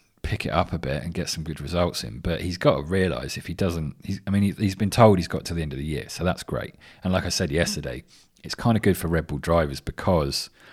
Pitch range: 75-95 Hz